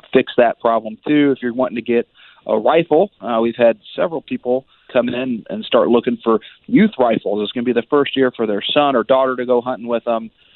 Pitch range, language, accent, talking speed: 115-130 Hz, English, American, 235 wpm